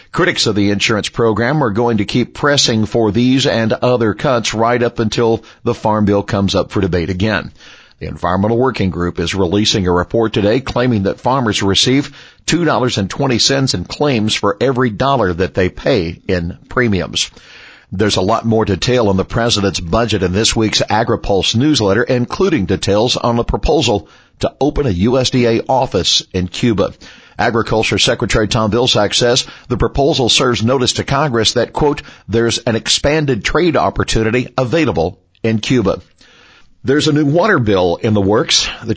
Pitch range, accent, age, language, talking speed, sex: 100-125 Hz, American, 50-69, English, 165 wpm, male